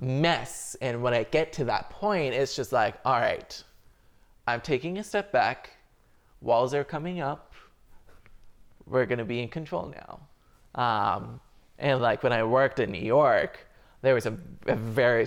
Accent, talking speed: American, 165 wpm